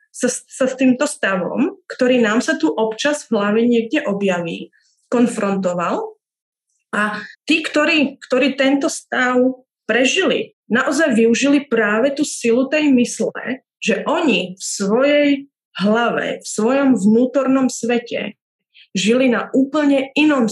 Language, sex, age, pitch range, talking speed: Czech, female, 30-49, 225-270 Hz, 120 wpm